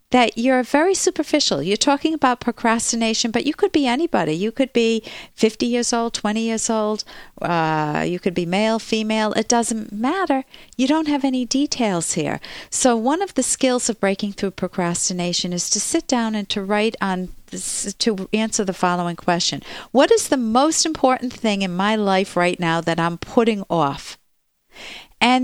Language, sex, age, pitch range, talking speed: English, female, 50-69, 185-265 Hz, 180 wpm